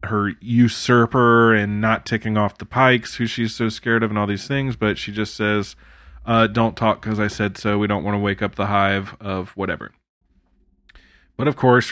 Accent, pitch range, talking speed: American, 105-120 Hz, 205 wpm